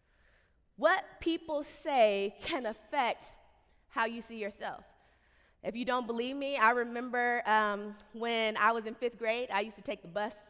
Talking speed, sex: 165 wpm, female